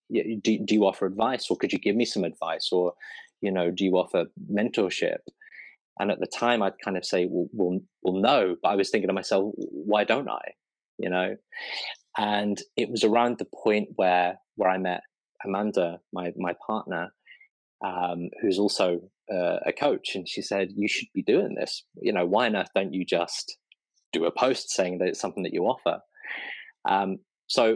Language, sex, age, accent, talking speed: English, male, 20-39, British, 190 wpm